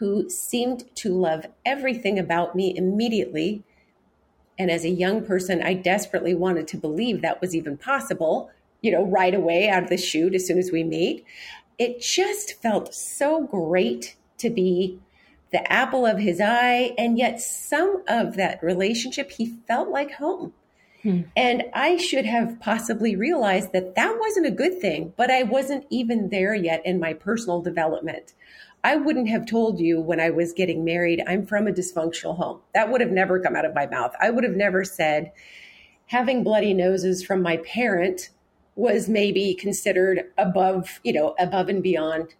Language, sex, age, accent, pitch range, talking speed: English, female, 40-59, American, 180-240 Hz, 170 wpm